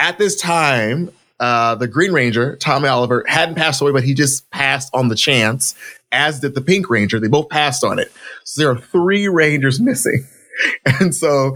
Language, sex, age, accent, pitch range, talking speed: English, male, 20-39, American, 120-150 Hz, 190 wpm